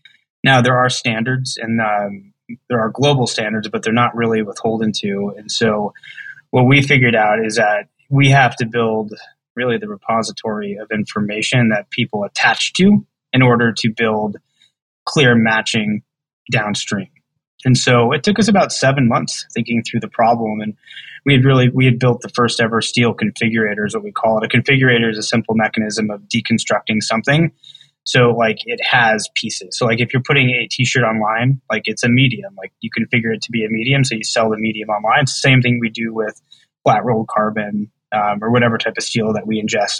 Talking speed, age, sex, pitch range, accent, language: 195 wpm, 20-39, male, 110-130 Hz, American, English